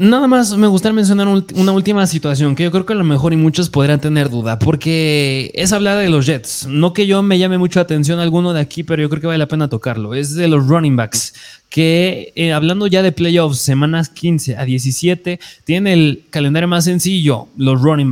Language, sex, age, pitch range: Spanish, male, 20-39, 135-165 Hz